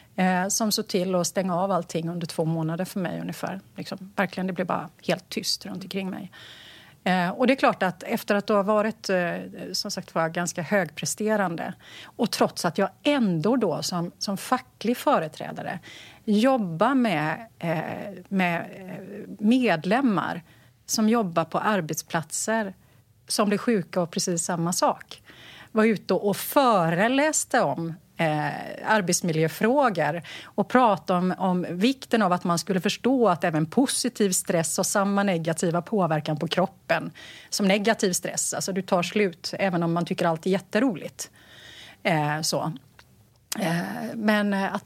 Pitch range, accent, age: 170-220 Hz, Swedish, 40-59